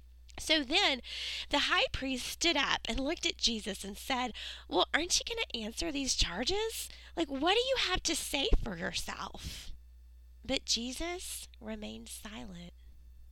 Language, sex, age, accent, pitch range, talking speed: English, female, 20-39, American, 190-310 Hz, 155 wpm